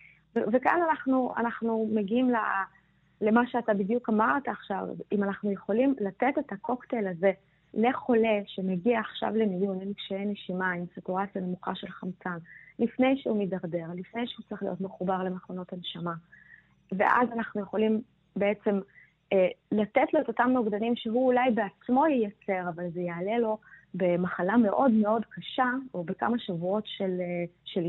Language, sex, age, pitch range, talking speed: Hebrew, female, 20-39, 185-235 Hz, 135 wpm